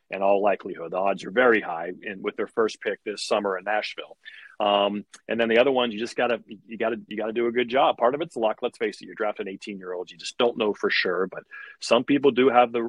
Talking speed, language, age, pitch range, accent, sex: 250 wpm, English, 40-59, 110-130 Hz, American, male